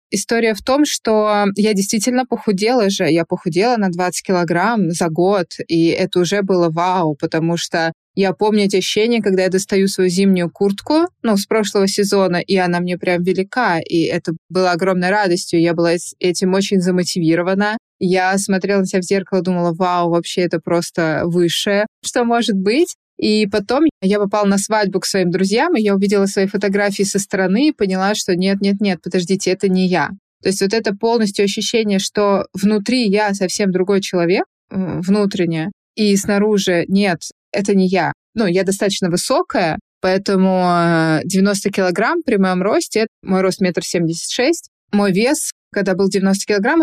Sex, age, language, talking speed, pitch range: female, 20-39, Russian, 165 wpm, 185-210 Hz